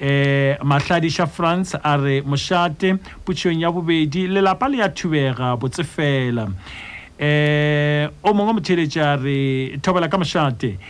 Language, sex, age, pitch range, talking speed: English, male, 60-79, 120-175 Hz, 125 wpm